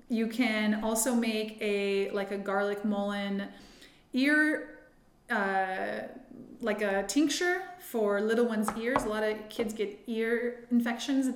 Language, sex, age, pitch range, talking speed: English, female, 20-39, 200-235 Hz, 135 wpm